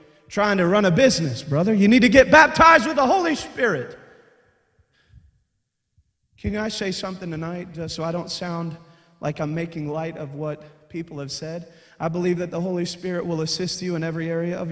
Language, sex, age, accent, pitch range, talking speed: English, male, 30-49, American, 175-255 Hz, 190 wpm